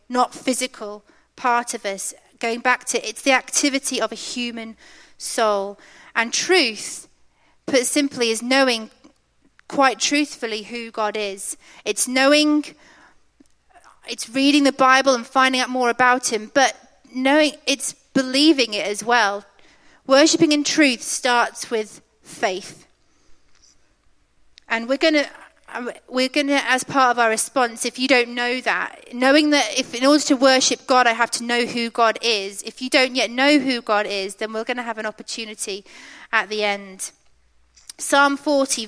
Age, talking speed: 30-49, 160 wpm